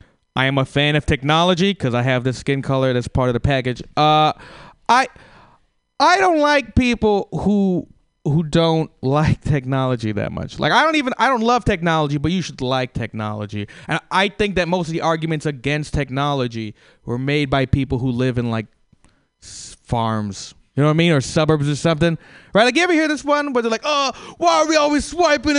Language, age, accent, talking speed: English, 30-49, American, 205 wpm